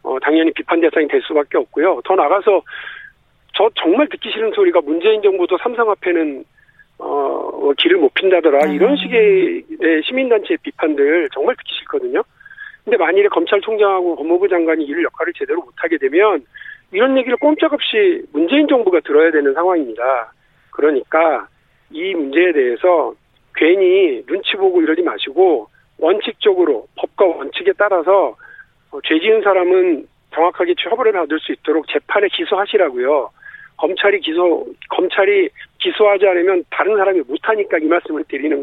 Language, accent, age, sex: Korean, native, 50-69, male